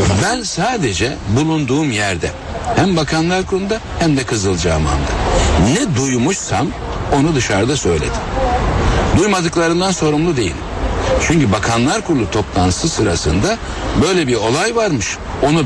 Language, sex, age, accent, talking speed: Turkish, male, 60-79, native, 110 wpm